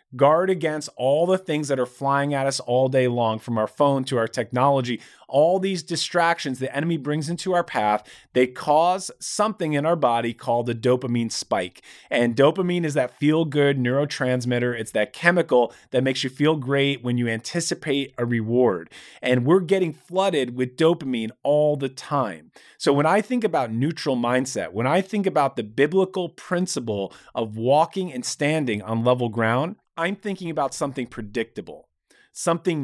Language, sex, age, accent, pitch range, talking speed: English, male, 30-49, American, 125-165 Hz, 170 wpm